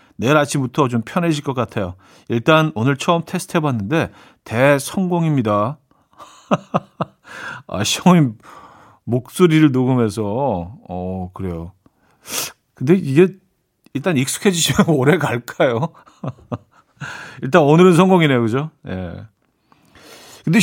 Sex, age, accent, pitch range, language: male, 40-59, native, 115-170 Hz, Korean